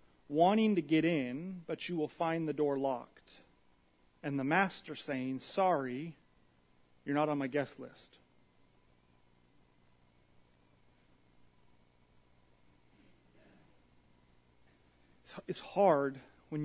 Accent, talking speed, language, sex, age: American, 90 wpm, English, male, 30-49